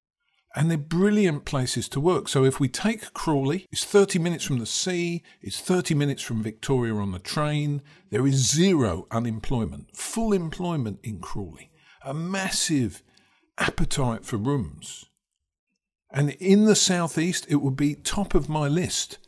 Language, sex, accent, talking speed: English, male, British, 155 wpm